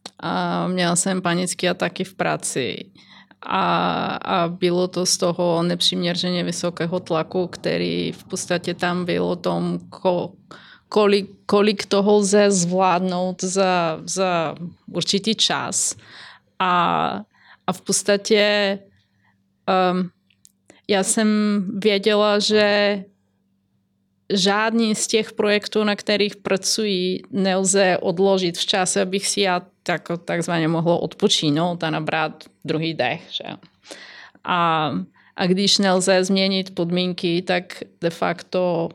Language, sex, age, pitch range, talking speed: Czech, female, 20-39, 170-195 Hz, 110 wpm